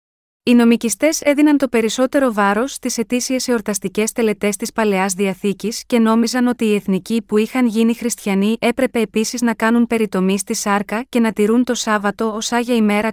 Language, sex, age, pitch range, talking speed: Greek, female, 20-39, 200-240 Hz, 170 wpm